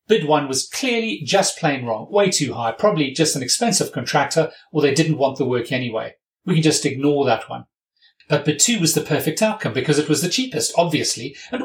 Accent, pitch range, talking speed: British, 135-175 Hz, 215 wpm